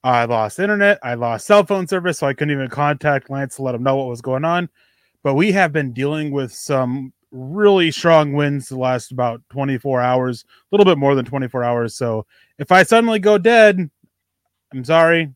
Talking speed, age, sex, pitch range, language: 205 wpm, 20-39, male, 120-145 Hz, English